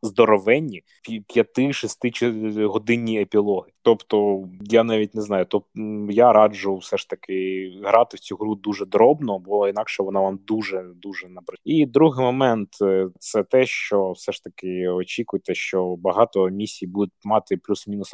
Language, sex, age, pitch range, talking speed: Ukrainian, male, 20-39, 95-110 Hz, 145 wpm